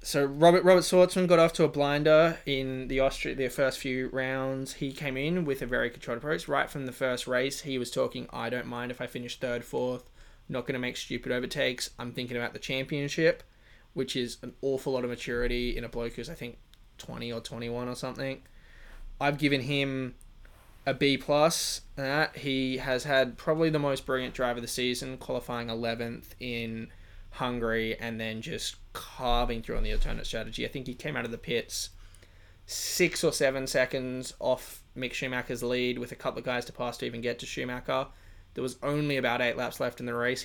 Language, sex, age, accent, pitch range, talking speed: English, male, 20-39, Australian, 120-140 Hz, 205 wpm